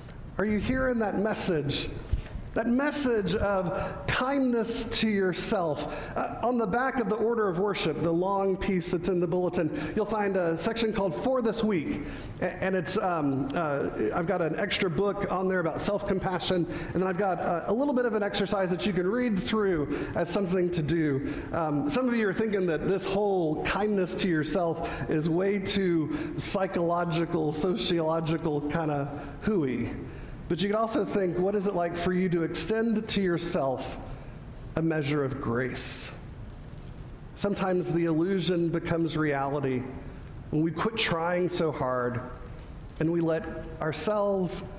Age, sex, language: 50-69, male, English